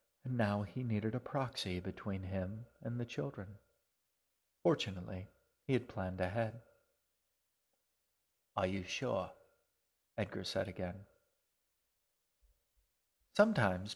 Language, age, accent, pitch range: English, 40-59, American, 100-125 Hz